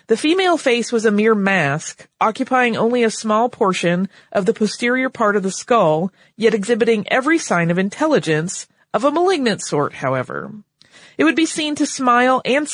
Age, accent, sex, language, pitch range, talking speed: 30-49, American, female, English, 180-235 Hz, 175 wpm